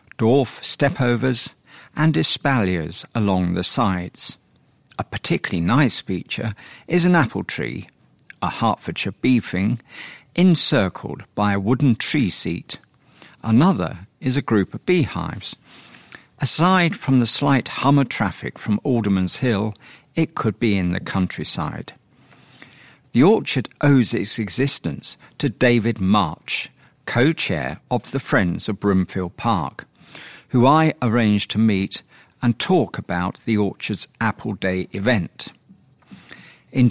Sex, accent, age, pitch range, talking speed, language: male, British, 50-69, 100-135 Hz, 120 wpm, English